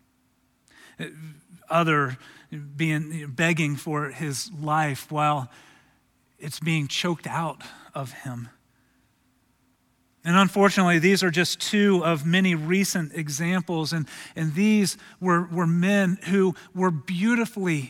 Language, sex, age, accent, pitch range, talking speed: English, male, 40-59, American, 155-200 Hz, 105 wpm